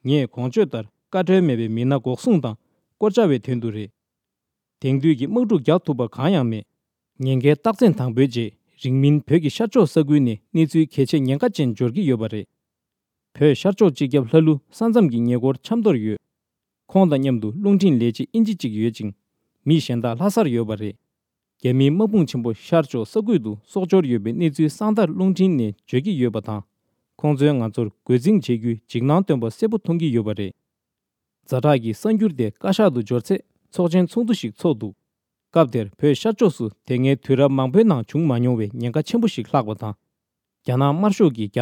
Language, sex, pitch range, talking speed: English, male, 115-170 Hz, 70 wpm